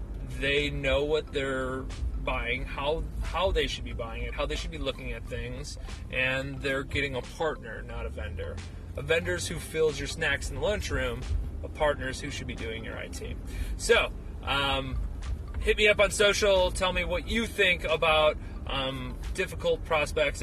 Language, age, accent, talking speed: English, 30-49, American, 175 wpm